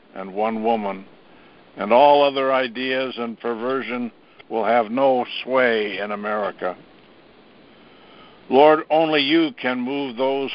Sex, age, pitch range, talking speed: male, 60-79, 110-130 Hz, 120 wpm